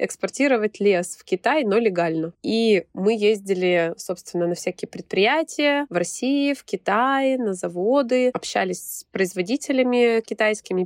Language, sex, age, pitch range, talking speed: Russian, female, 20-39, 180-235 Hz, 125 wpm